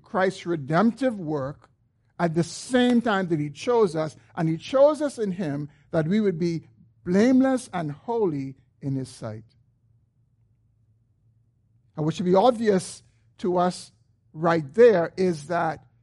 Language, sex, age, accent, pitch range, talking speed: English, male, 50-69, American, 120-200 Hz, 140 wpm